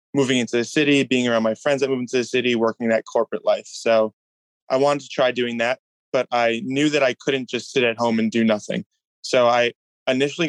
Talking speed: 230 wpm